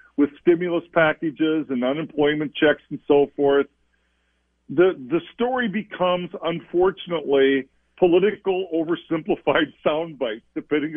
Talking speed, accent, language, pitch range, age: 100 wpm, American, English, 150-185 Hz, 50-69